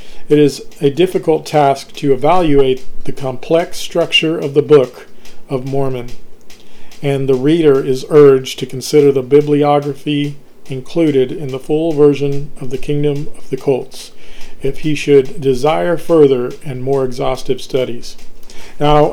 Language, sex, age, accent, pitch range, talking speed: English, male, 40-59, American, 135-155 Hz, 140 wpm